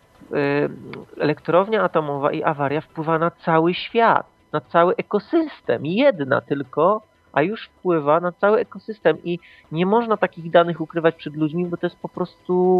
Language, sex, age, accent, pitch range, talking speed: Polish, male, 30-49, native, 125-170 Hz, 150 wpm